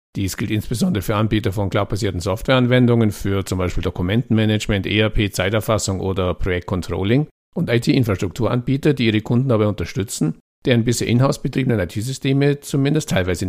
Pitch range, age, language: 90-125 Hz, 50-69, German